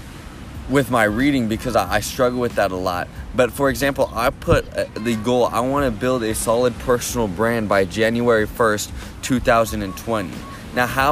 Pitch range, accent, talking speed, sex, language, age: 100-125 Hz, American, 165 wpm, male, English, 20-39